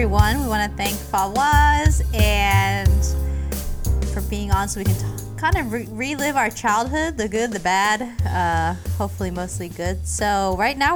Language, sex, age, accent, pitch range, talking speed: English, female, 20-39, American, 165-210 Hz, 170 wpm